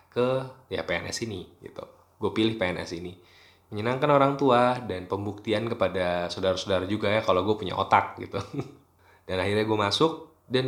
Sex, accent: male, native